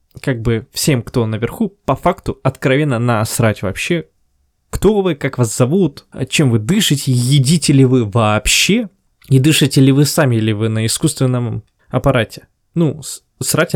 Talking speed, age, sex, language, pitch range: 150 wpm, 20-39, male, Russian, 115-155 Hz